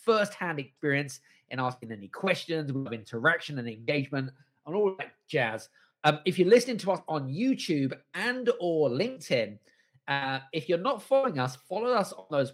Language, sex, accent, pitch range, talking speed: English, male, British, 130-195 Hz, 165 wpm